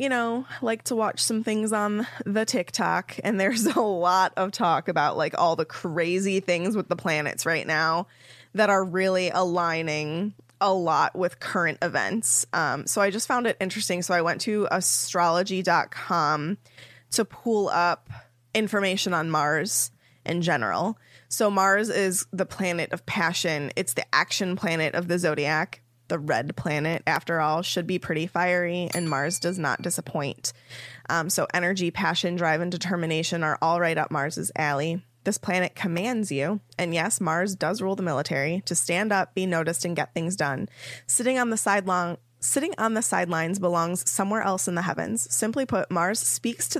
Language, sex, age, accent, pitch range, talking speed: English, female, 20-39, American, 160-195 Hz, 170 wpm